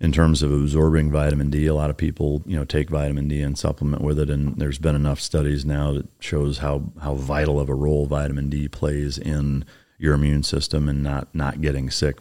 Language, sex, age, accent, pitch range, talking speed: English, male, 40-59, American, 70-75 Hz, 220 wpm